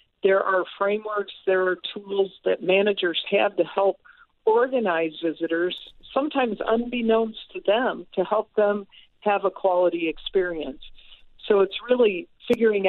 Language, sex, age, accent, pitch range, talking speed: English, female, 50-69, American, 175-210 Hz, 130 wpm